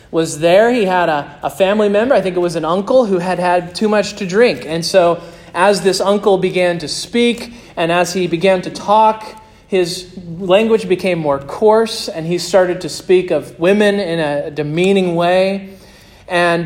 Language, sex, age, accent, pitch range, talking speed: English, male, 40-59, American, 155-195 Hz, 185 wpm